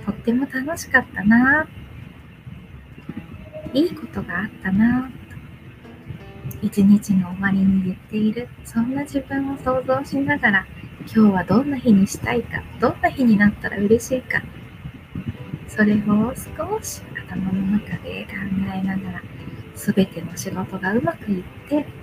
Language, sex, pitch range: Japanese, female, 195-260 Hz